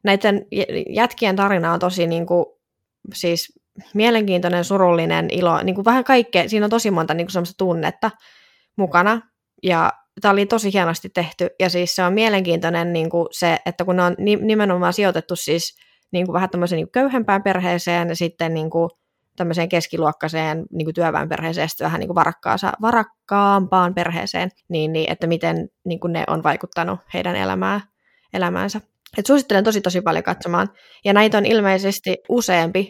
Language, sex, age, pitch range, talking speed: Finnish, female, 20-39, 170-200 Hz, 160 wpm